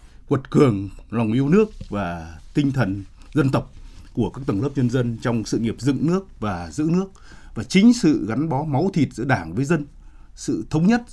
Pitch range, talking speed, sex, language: 110-150 Hz, 205 wpm, male, Vietnamese